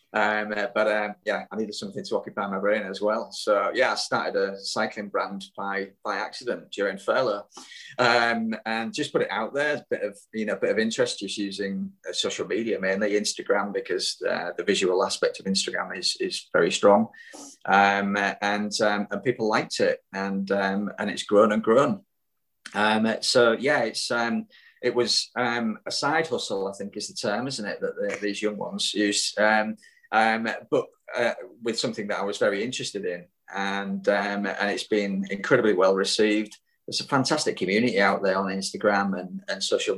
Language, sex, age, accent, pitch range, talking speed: English, male, 20-39, British, 100-120 Hz, 190 wpm